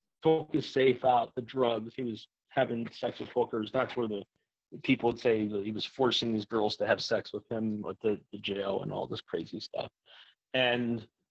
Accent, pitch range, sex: American, 110-130 Hz, male